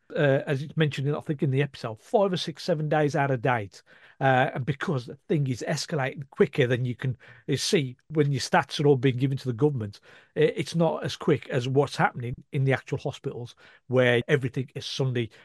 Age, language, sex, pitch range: 50-69, English, male, 125-155 Hz